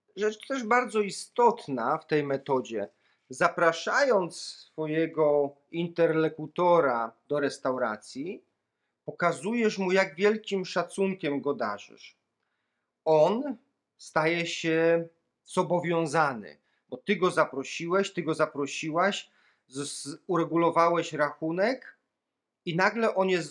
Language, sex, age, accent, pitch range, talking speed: Polish, male, 40-59, native, 145-190 Hz, 90 wpm